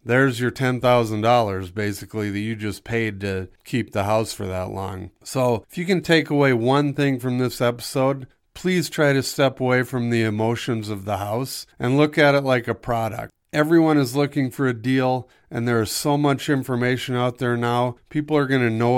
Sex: male